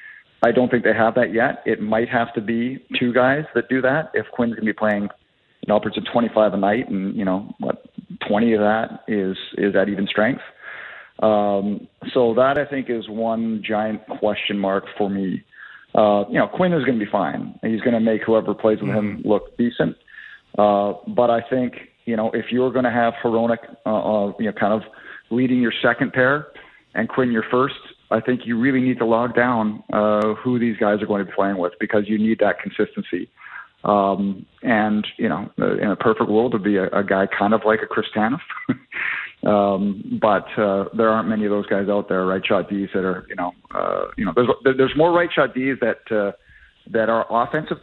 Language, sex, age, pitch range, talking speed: English, male, 40-59, 105-120 Hz, 215 wpm